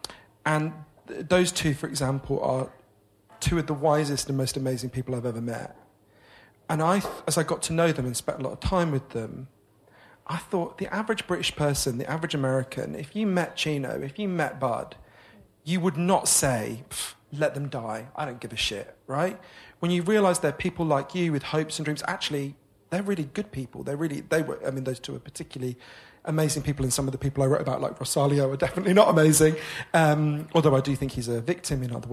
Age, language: 40-59, English